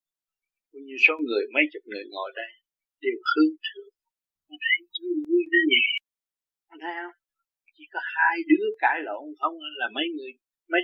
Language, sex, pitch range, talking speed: Vietnamese, male, 290-420 Hz, 145 wpm